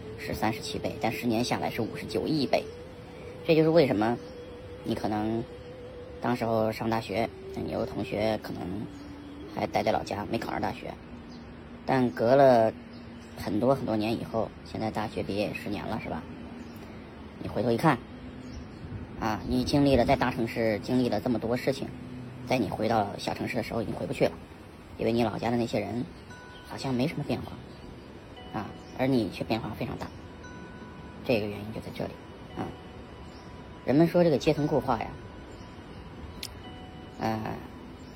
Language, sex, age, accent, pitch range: Chinese, male, 20-39, native, 100-125 Hz